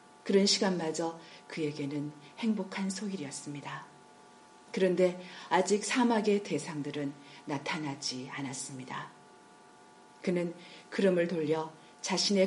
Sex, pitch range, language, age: female, 145-190 Hz, Korean, 40-59